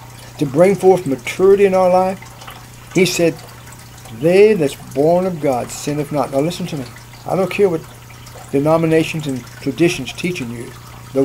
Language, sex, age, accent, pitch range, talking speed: English, male, 60-79, American, 125-170 Hz, 165 wpm